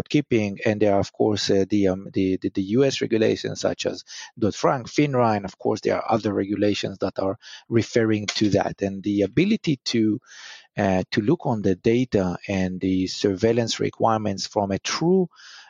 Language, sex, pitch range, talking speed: English, male, 100-125 Hz, 185 wpm